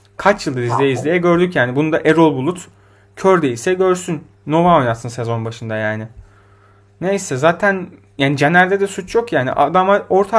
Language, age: Turkish, 30-49